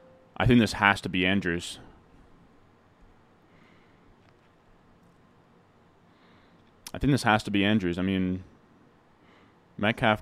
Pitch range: 90-115 Hz